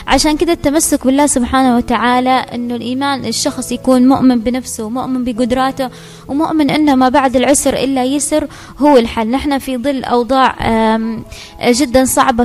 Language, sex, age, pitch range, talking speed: Arabic, female, 20-39, 235-275 Hz, 140 wpm